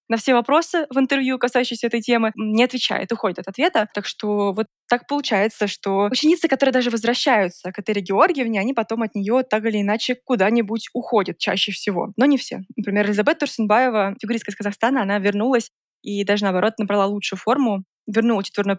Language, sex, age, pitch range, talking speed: Russian, female, 20-39, 205-245 Hz, 180 wpm